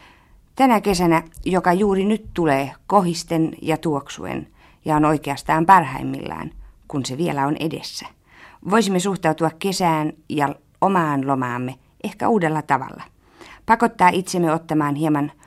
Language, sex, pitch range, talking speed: Finnish, female, 140-180 Hz, 120 wpm